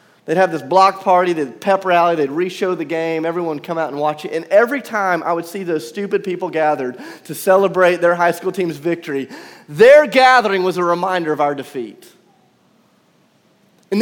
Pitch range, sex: 140-210 Hz, male